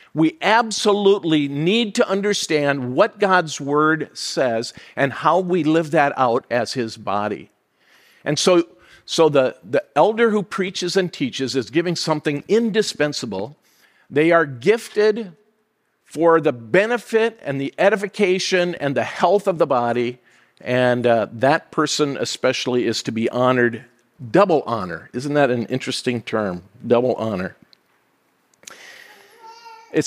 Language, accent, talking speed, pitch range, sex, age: English, American, 130 wpm, 130-185 Hz, male, 50-69